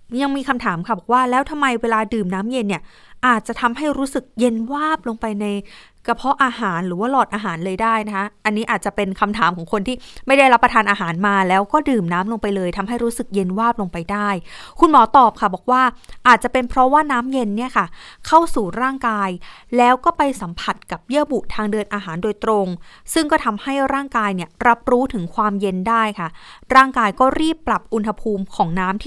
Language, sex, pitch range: Thai, female, 200-255 Hz